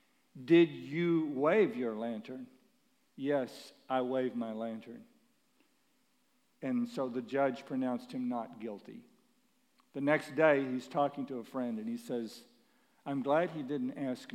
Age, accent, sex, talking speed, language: 50-69, American, male, 140 wpm, English